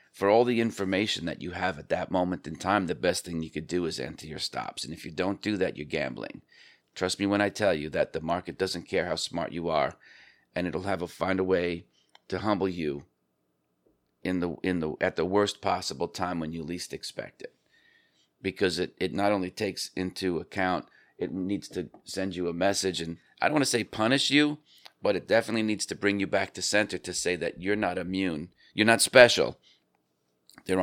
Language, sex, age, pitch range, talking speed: English, male, 40-59, 85-100 Hz, 220 wpm